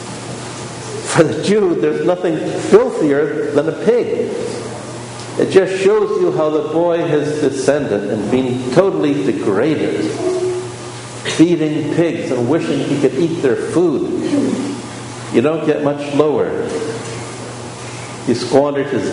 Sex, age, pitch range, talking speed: male, 60-79, 135-200 Hz, 120 wpm